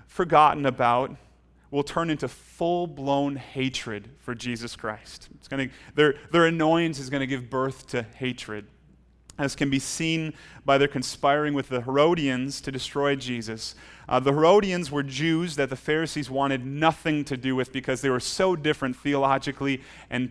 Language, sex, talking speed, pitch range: English, male, 170 wpm, 130-150 Hz